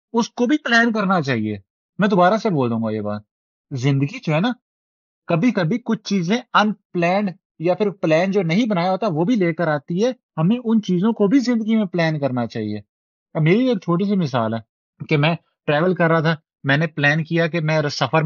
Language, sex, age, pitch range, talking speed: Urdu, male, 30-49, 130-185 Hz, 215 wpm